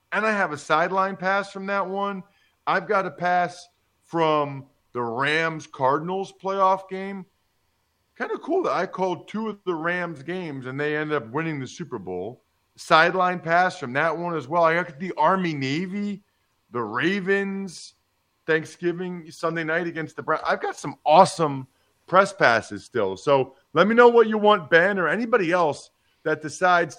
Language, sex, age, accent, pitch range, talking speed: English, male, 40-59, American, 130-180 Hz, 170 wpm